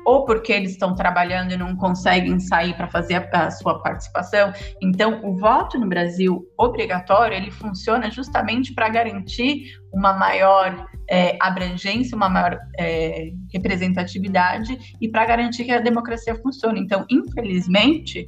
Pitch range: 185-230 Hz